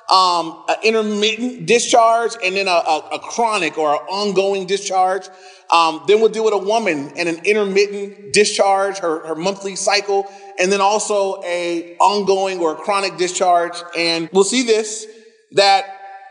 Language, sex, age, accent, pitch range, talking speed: English, male, 30-49, American, 175-215 Hz, 160 wpm